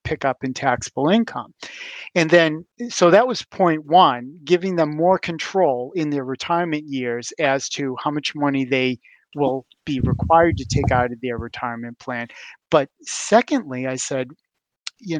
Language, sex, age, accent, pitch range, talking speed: English, male, 50-69, American, 130-170 Hz, 160 wpm